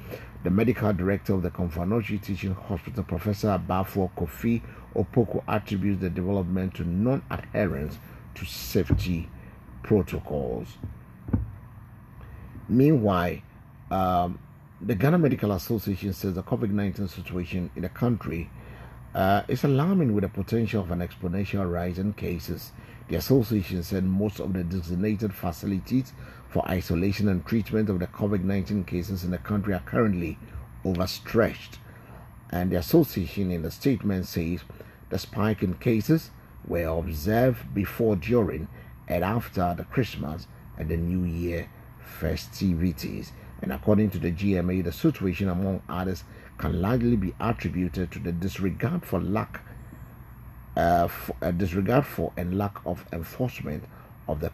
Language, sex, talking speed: English, male, 130 wpm